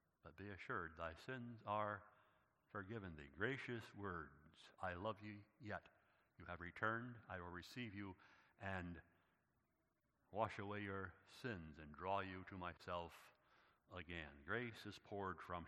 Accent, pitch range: American, 95-120 Hz